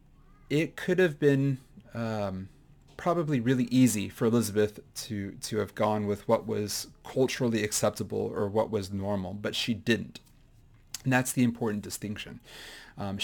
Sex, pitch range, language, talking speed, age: male, 105-130 Hz, English, 145 wpm, 30-49